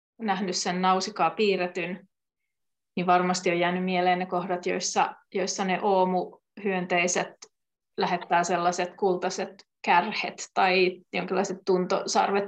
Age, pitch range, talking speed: 30-49, 180-200 Hz, 105 wpm